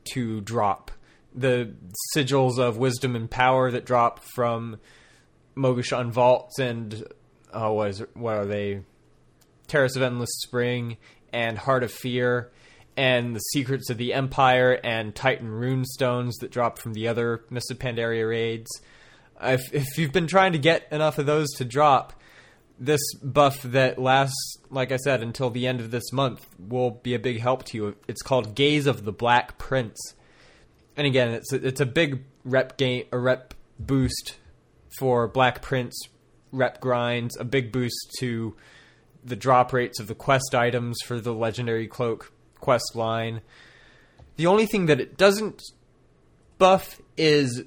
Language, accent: English, American